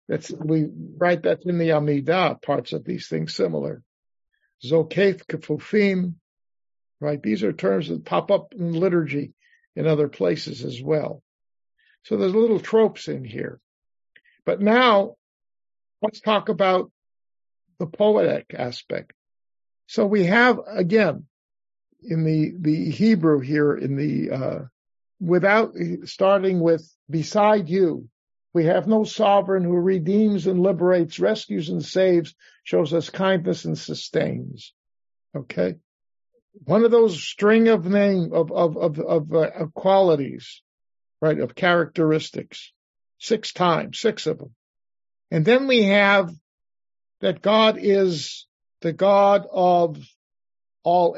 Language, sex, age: English, male, 50-69